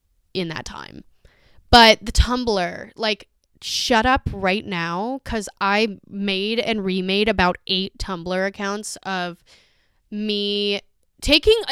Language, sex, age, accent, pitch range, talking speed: English, female, 10-29, American, 180-245 Hz, 120 wpm